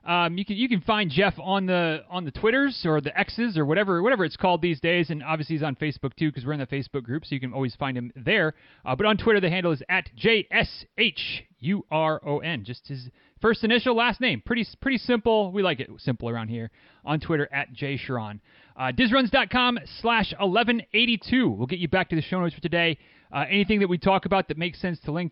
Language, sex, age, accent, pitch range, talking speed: English, male, 30-49, American, 145-210 Hz, 245 wpm